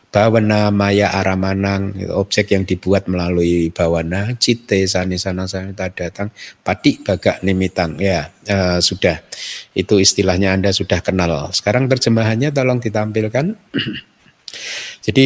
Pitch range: 95-115 Hz